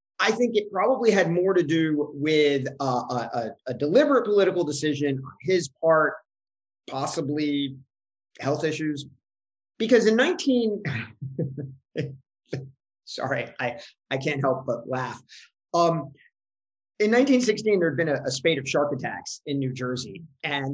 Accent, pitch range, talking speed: American, 130-165 Hz, 135 wpm